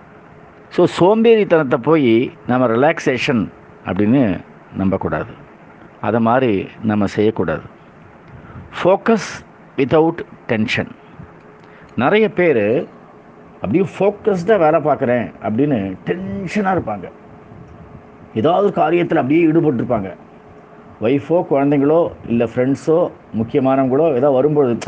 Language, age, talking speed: Tamil, 50-69, 80 wpm